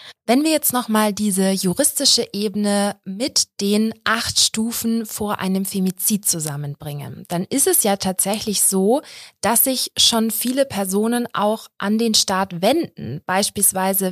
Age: 20-39